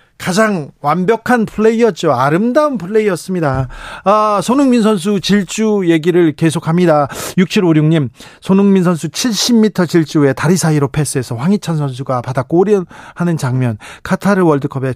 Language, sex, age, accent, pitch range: Korean, male, 40-59, native, 135-185 Hz